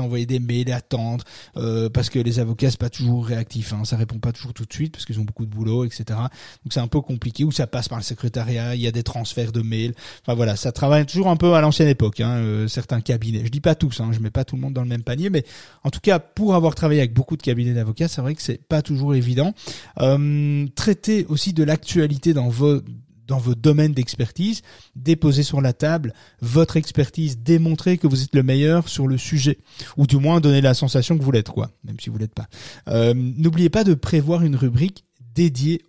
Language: French